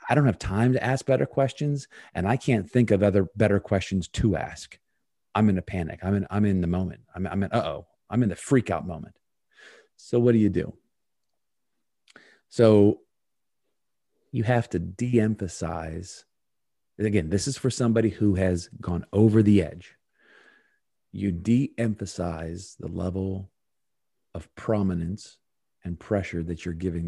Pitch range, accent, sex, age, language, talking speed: 90-110 Hz, American, male, 40-59, English, 155 wpm